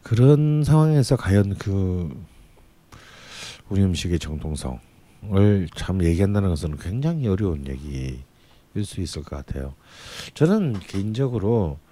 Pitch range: 85-120 Hz